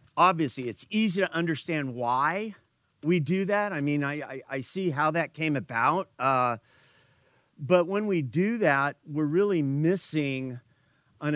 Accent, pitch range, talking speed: American, 135-165 Hz, 155 wpm